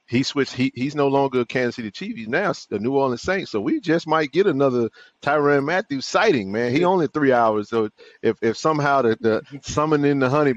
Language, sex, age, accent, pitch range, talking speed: English, male, 30-49, American, 100-140 Hz, 220 wpm